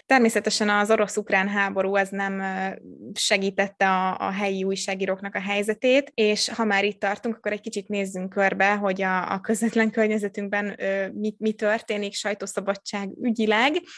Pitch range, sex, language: 195-215 Hz, female, Hungarian